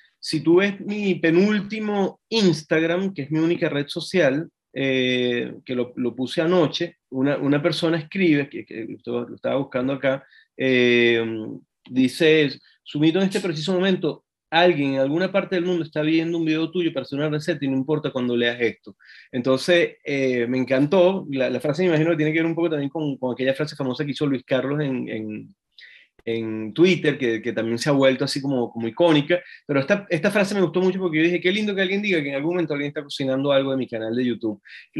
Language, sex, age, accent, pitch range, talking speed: Spanish, male, 30-49, Argentinian, 135-175 Hz, 215 wpm